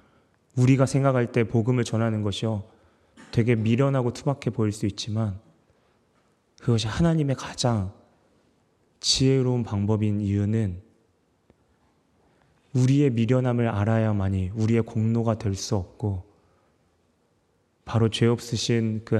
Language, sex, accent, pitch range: Korean, male, native, 100-115 Hz